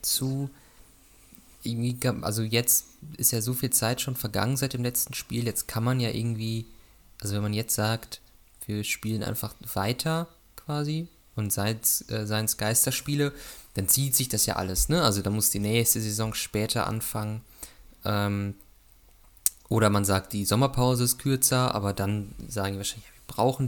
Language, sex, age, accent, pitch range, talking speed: German, male, 20-39, German, 105-125 Hz, 170 wpm